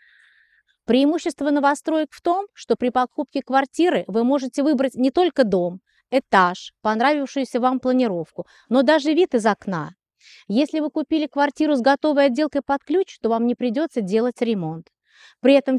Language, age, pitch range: Russian, 30-49, 200-280 Hz